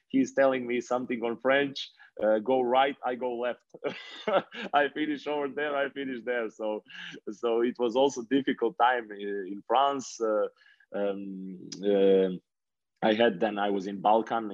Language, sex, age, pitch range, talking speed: English, male, 20-39, 100-125 Hz, 160 wpm